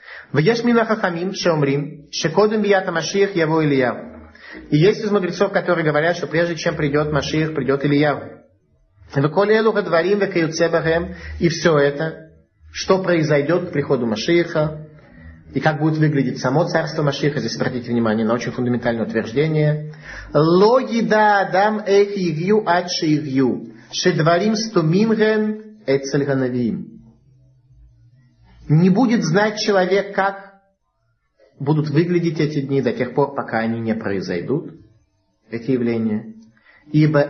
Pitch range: 115-175 Hz